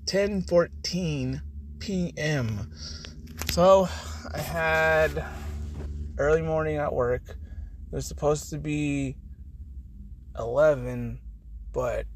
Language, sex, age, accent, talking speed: English, male, 20-39, American, 85 wpm